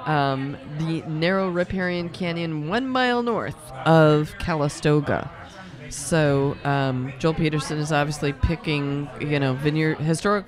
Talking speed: 120 wpm